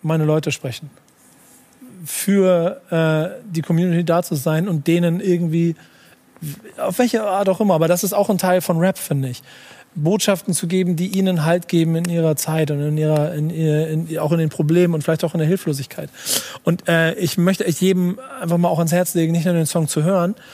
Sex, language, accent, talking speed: male, German, German, 210 wpm